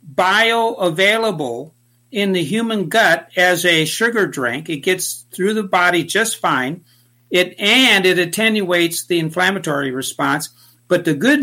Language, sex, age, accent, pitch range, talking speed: English, male, 60-79, American, 150-195 Hz, 135 wpm